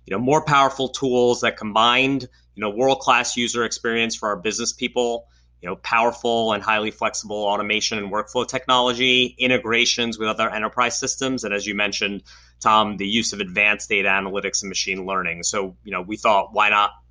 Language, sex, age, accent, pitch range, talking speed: English, male, 30-49, American, 100-125 Hz, 180 wpm